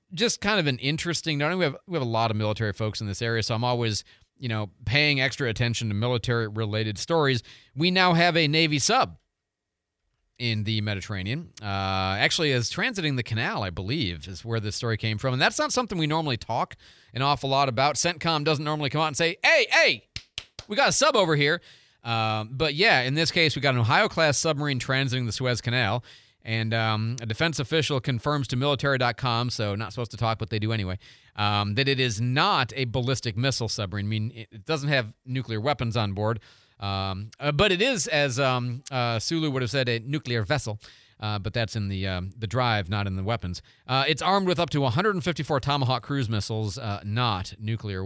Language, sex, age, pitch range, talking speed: English, male, 40-59, 110-145 Hz, 210 wpm